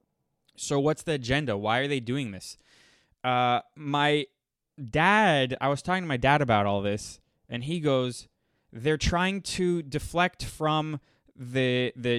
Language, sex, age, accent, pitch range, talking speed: English, male, 20-39, American, 125-170 Hz, 155 wpm